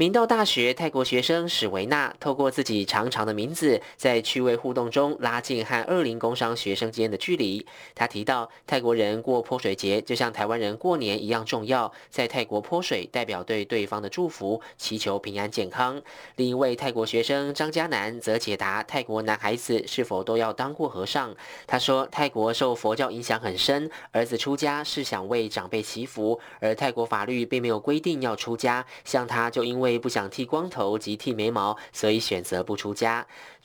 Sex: male